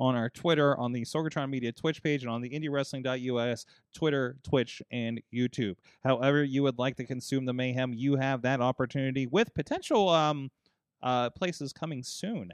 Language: English